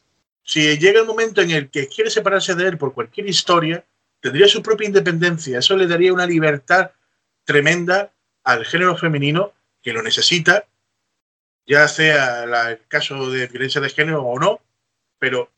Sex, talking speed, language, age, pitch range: male, 160 wpm, Spanish, 30-49, 140-190 Hz